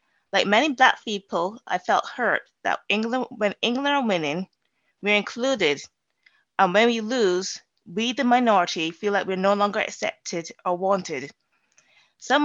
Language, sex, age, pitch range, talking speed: English, female, 20-39, 180-230 Hz, 145 wpm